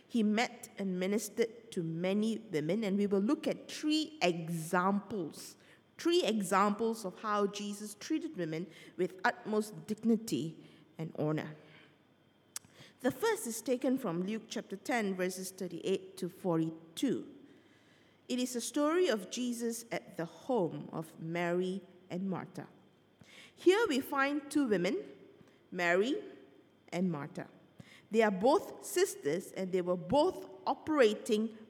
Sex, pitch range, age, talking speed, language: female, 180-235 Hz, 50-69, 130 wpm, English